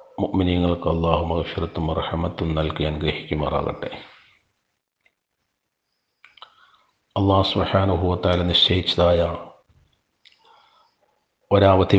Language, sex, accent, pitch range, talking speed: Malayalam, male, native, 85-95 Hz, 55 wpm